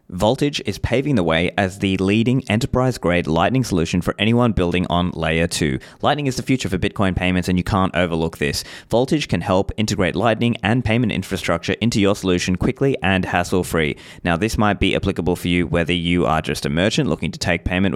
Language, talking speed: English, 200 wpm